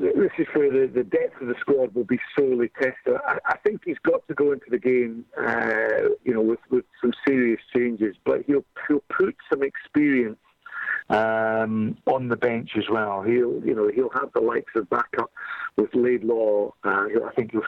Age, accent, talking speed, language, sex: 50-69, British, 190 wpm, English, male